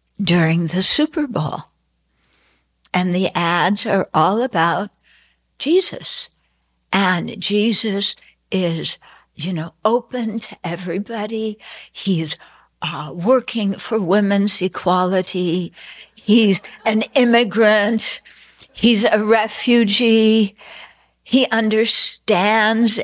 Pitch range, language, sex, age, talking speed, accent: 170-215 Hz, English, female, 60-79, 85 wpm, American